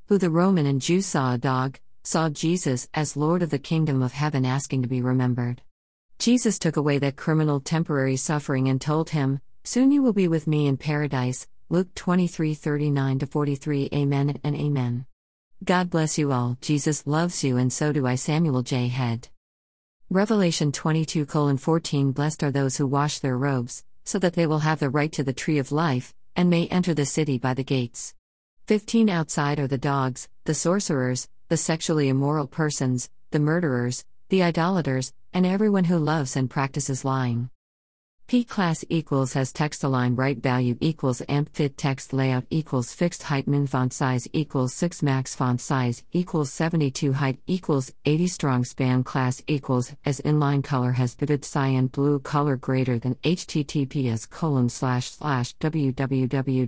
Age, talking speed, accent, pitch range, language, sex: 50-69, 165 wpm, American, 130-160 Hz, English, female